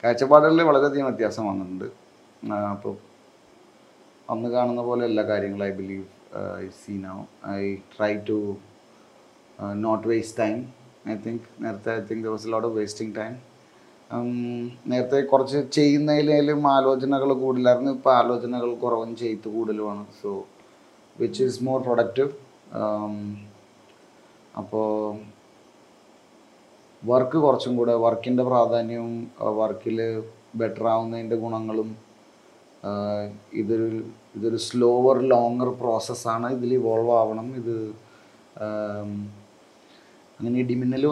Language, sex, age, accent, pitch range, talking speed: Malayalam, male, 30-49, native, 110-130 Hz, 95 wpm